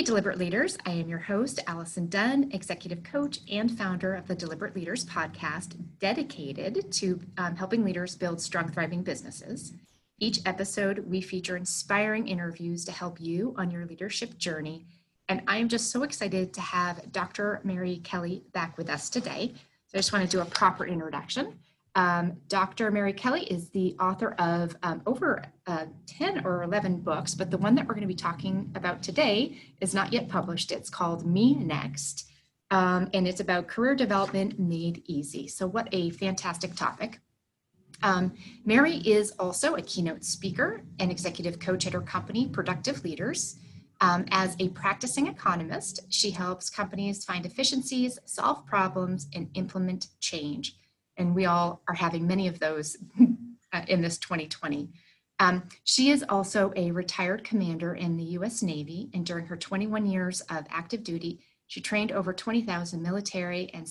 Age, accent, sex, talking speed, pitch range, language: 30-49, American, female, 165 wpm, 175-205 Hz, English